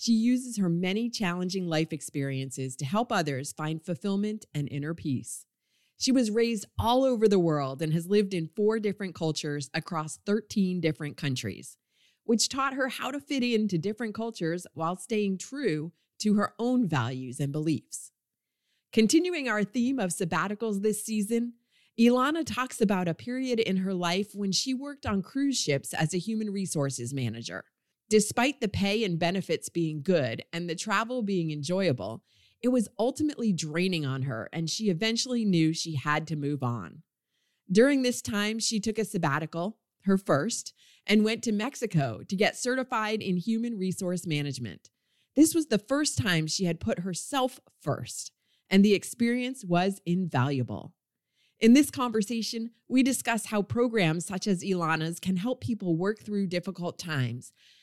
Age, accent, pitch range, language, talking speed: 30-49, American, 160-230 Hz, English, 160 wpm